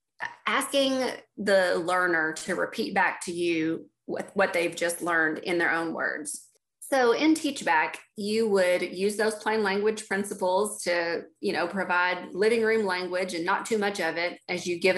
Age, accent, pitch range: 30-49, American, 165-220 Hz